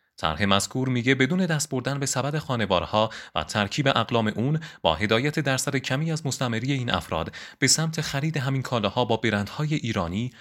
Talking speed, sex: 175 wpm, male